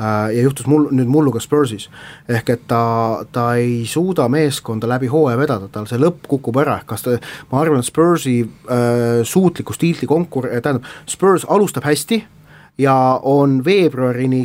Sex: male